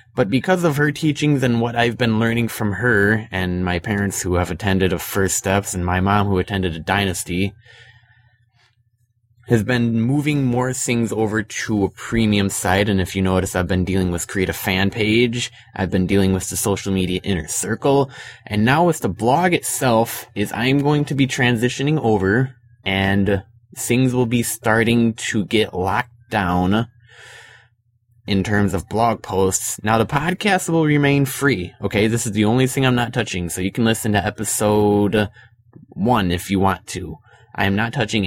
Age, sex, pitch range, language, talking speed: 20-39, male, 100-120 Hz, English, 180 wpm